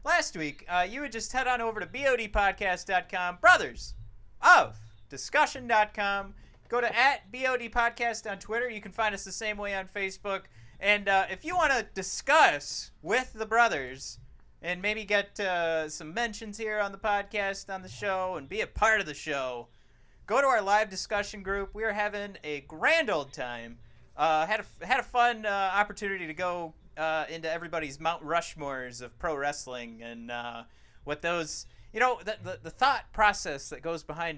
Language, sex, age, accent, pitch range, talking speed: English, male, 30-49, American, 150-215 Hz, 180 wpm